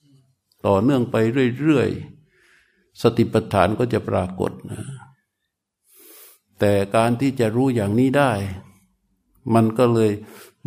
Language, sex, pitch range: Thai, male, 105-120 Hz